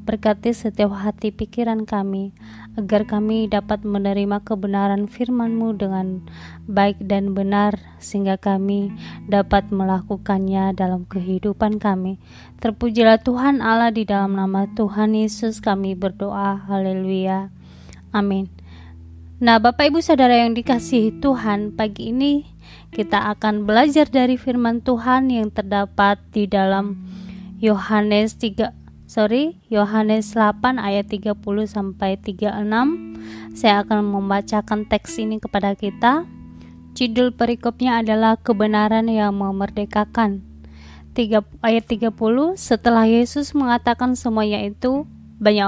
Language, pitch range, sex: Indonesian, 200-230 Hz, female